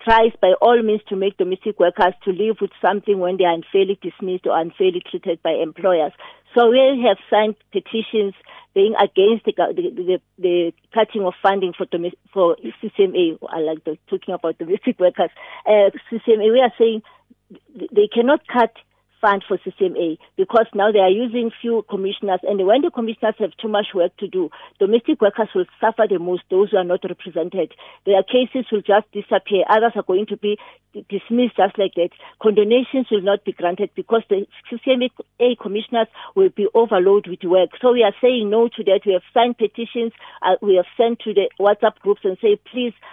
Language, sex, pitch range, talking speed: English, female, 185-225 Hz, 190 wpm